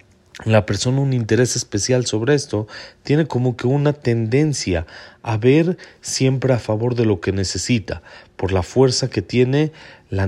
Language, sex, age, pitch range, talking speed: Spanish, male, 40-59, 105-130 Hz, 160 wpm